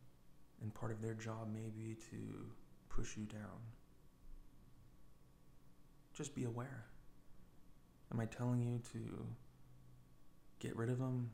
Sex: male